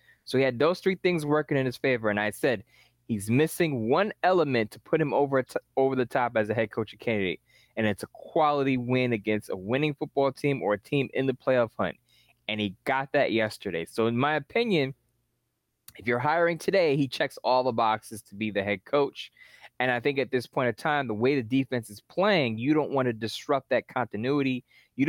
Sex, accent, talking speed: male, American, 220 wpm